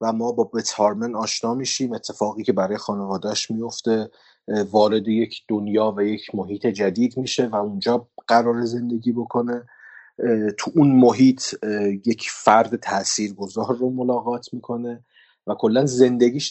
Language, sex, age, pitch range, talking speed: Persian, male, 30-49, 105-130 Hz, 130 wpm